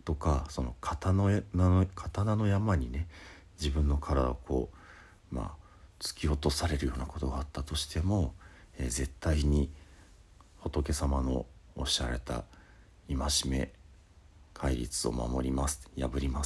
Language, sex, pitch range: Japanese, male, 70-90 Hz